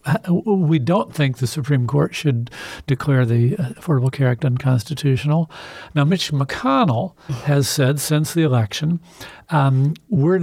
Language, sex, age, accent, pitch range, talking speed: English, male, 50-69, American, 130-165 Hz, 130 wpm